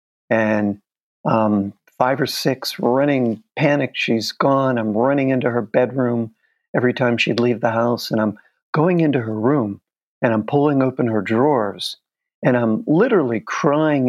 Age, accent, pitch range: 50-69, American, 115-140 Hz